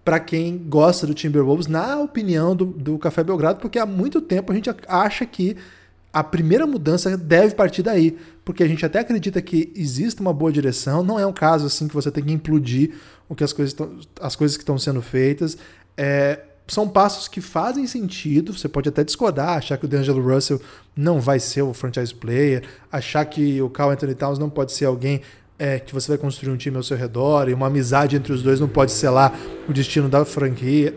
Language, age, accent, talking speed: Portuguese, 20-39, Brazilian, 205 wpm